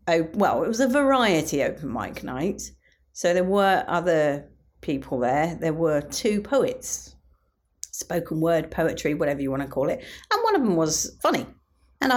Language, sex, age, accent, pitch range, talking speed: English, female, 40-59, British, 155-210 Hz, 170 wpm